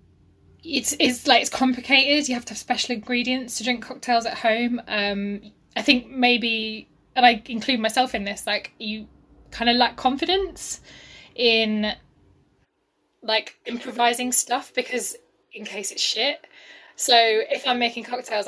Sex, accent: female, British